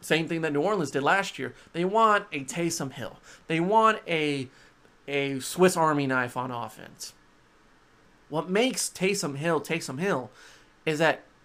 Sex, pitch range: male, 145-195 Hz